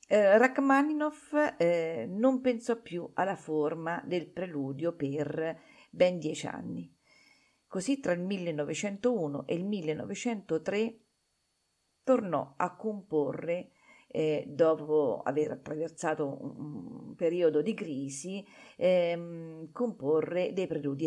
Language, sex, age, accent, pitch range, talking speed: Italian, female, 50-69, native, 150-205 Hz, 105 wpm